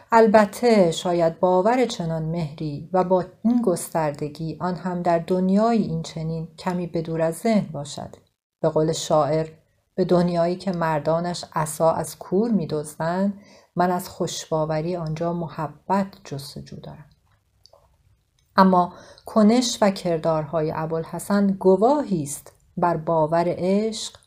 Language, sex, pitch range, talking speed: Persian, female, 160-195 Hz, 120 wpm